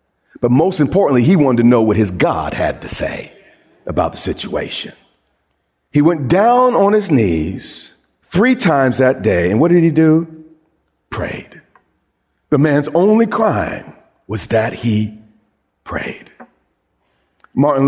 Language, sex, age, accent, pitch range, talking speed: English, male, 50-69, American, 100-150 Hz, 140 wpm